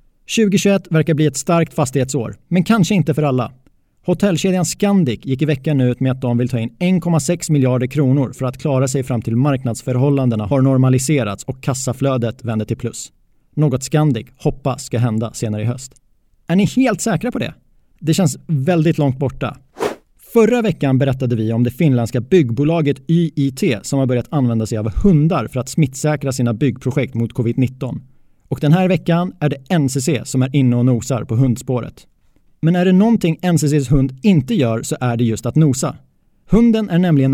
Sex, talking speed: male, 180 wpm